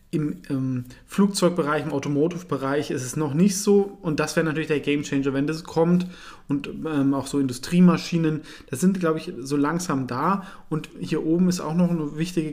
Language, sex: German, male